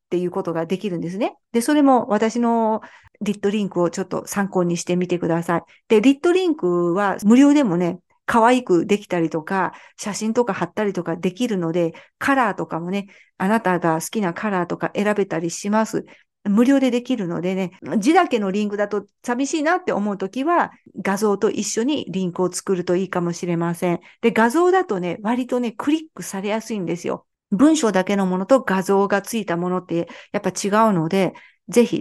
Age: 50-69